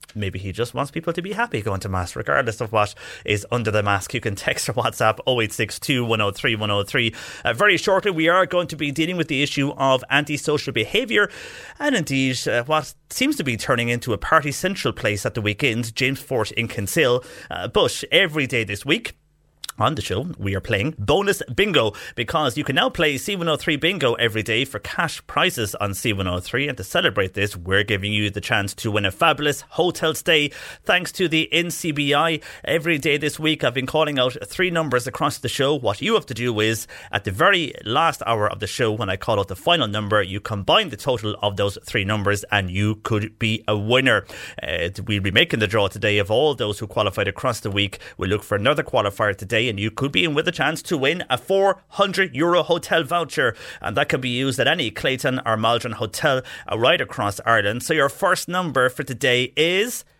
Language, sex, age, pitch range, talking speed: English, male, 30-49, 105-155 Hz, 210 wpm